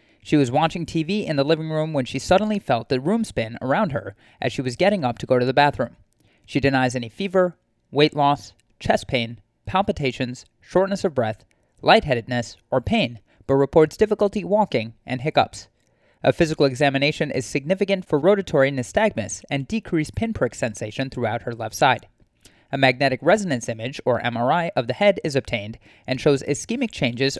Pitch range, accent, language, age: 115-160 Hz, American, English, 30-49